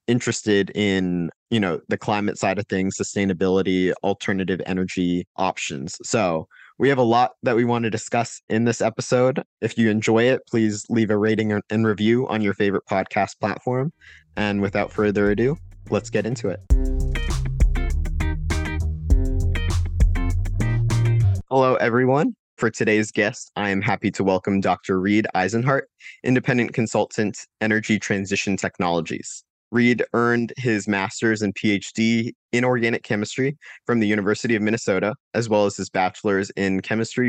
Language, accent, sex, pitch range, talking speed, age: English, American, male, 95-115 Hz, 140 wpm, 20-39